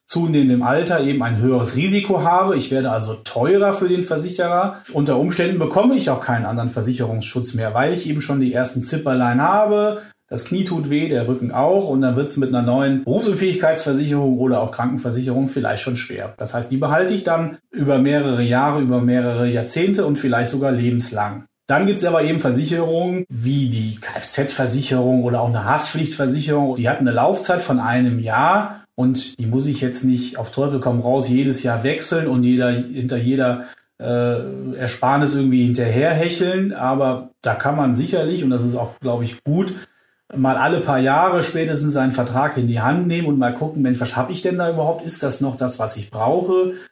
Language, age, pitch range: German, 30-49, 125-160 Hz